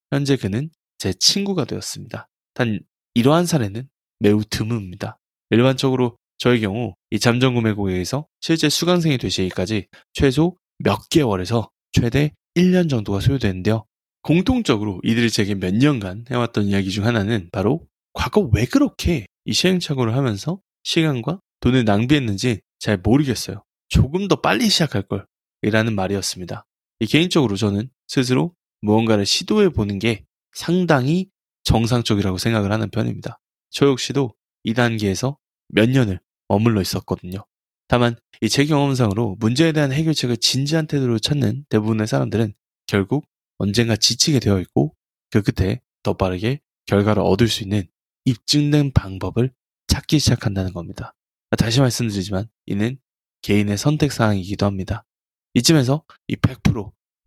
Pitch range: 105-140 Hz